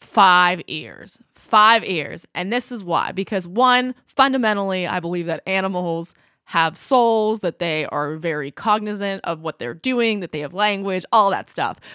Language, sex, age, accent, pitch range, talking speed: English, female, 20-39, American, 175-220 Hz, 165 wpm